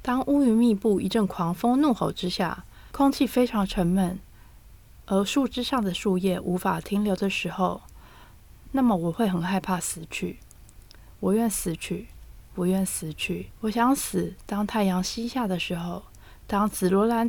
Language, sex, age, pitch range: Chinese, female, 20-39, 180-225 Hz